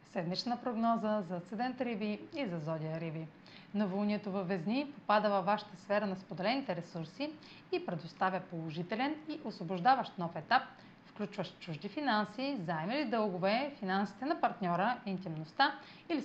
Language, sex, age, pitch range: Bulgarian, female, 30-49, 180-240 Hz